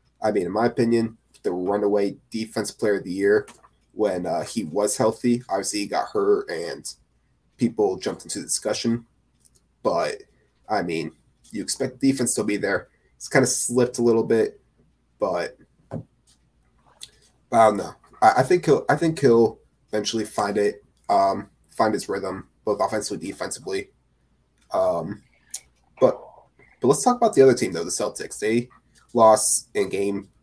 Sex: male